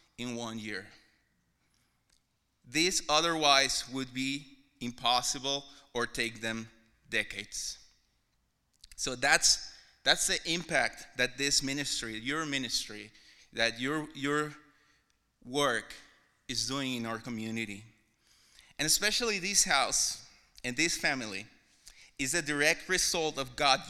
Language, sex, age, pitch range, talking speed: English, male, 30-49, 125-170 Hz, 110 wpm